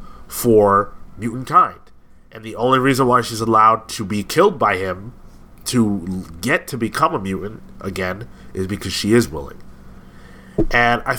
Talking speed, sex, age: 155 wpm, male, 30-49